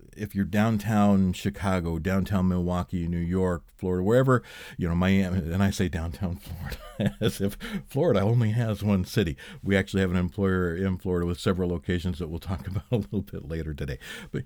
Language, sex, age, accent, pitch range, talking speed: English, male, 50-69, American, 90-110 Hz, 185 wpm